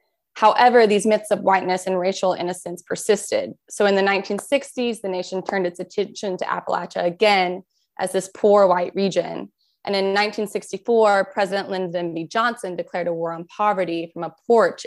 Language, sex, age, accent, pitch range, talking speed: English, female, 20-39, American, 180-210 Hz, 165 wpm